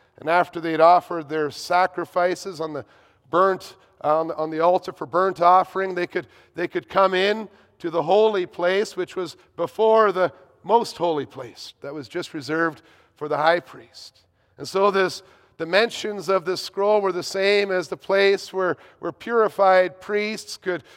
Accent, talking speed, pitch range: American, 175 wpm, 170-200 Hz